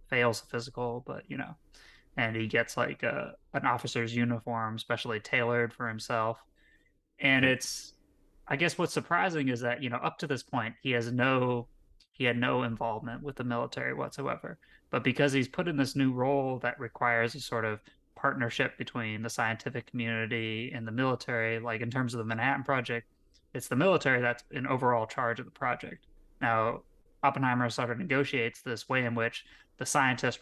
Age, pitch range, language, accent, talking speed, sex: 20-39, 115-130 Hz, English, American, 180 wpm, male